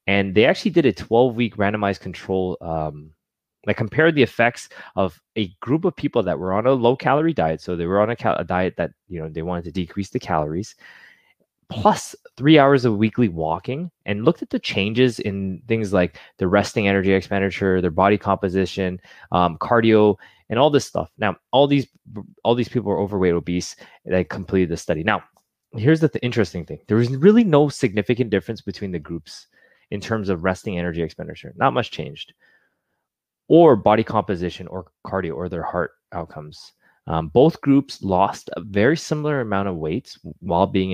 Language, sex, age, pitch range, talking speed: English, male, 20-39, 90-120 Hz, 185 wpm